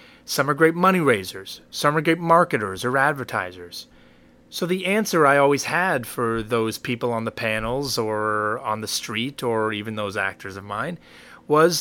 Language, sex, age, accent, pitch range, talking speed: English, male, 30-49, American, 110-150 Hz, 175 wpm